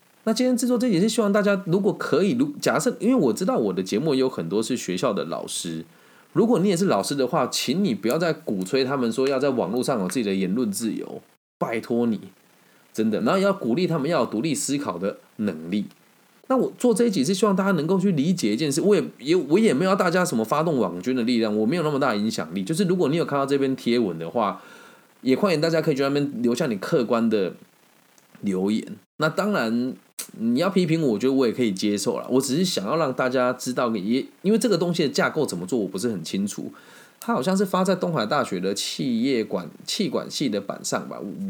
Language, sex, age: Chinese, male, 20-39